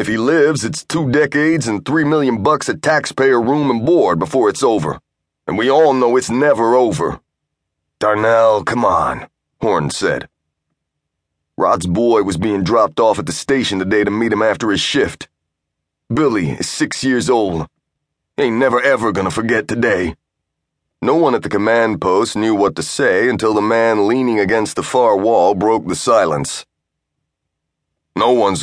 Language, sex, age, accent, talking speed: English, male, 30-49, American, 170 wpm